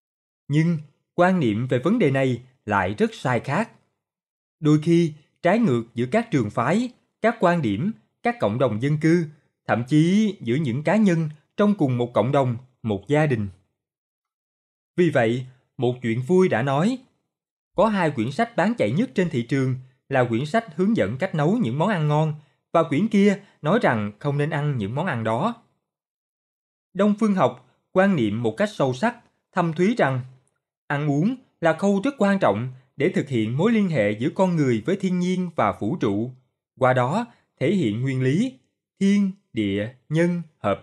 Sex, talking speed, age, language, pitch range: male, 185 wpm, 20-39, Vietnamese, 125-190 Hz